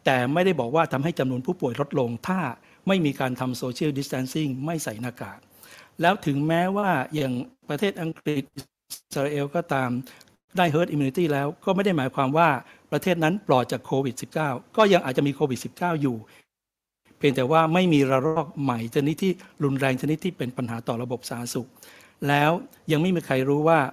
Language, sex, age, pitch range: Thai, male, 60-79, 130-165 Hz